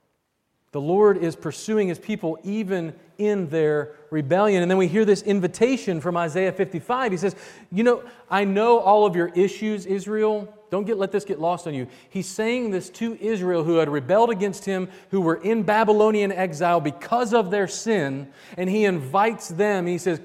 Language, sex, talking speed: English, male, 185 wpm